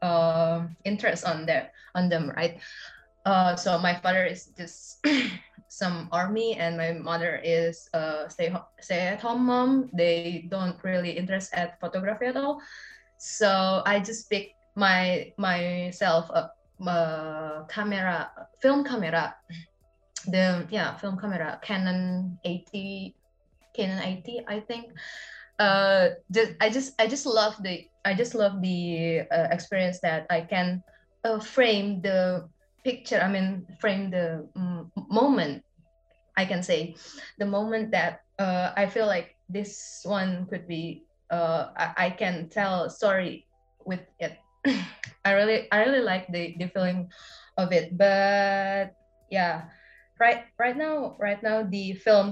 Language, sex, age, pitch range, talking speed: English, female, 20-39, 170-215 Hz, 140 wpm